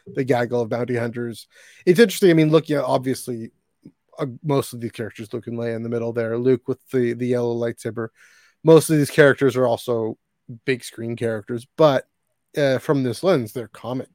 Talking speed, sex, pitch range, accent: 205 wpm, male, 120-145 Hz, American